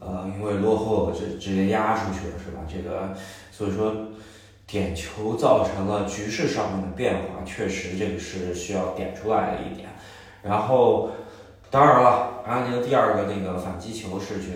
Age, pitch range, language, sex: 20-39, 95-110 Hz, Chinese, male